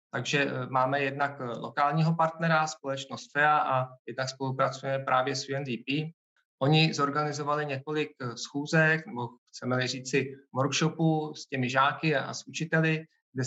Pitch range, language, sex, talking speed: 135-155 Hz, Czech, male, 125 wpm